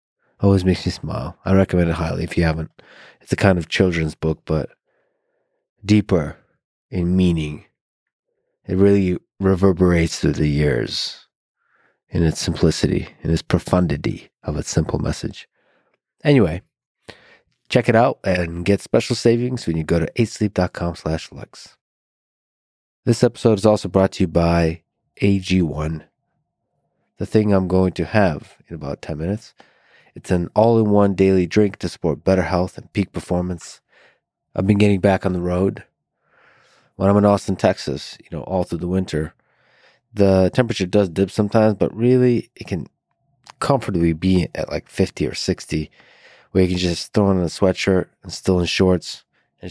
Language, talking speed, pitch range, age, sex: English, 155 wpm, 85-105 Hz, 30-49, male